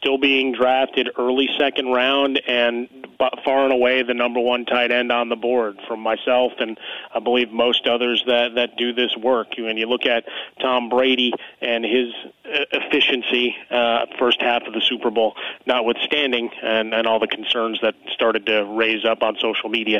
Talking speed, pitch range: 180 wpm, 110-125 Hz